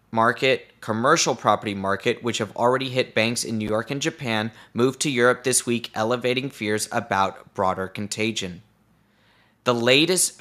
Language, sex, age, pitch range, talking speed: English, male, 20-39, 110-140 Hz, 150 wpm